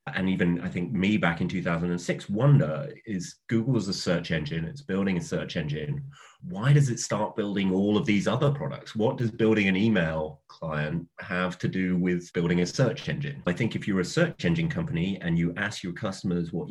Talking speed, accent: 210 wpm, British